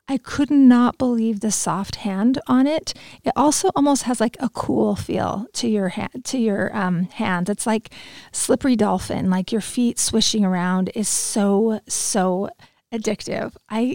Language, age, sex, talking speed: English, 30-49, female, 165 wpm